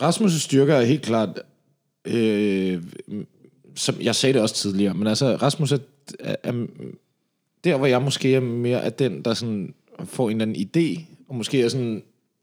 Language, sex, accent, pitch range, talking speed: Danish, male, native, 115-150 Hz, 170 wpm